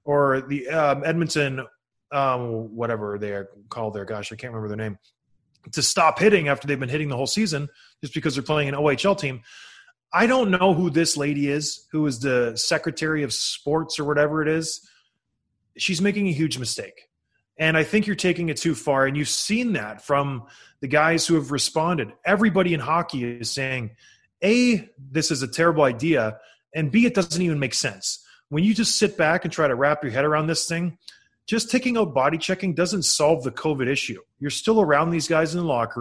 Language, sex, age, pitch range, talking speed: English, male, 20-39, 140-185 Hz, 205 wpm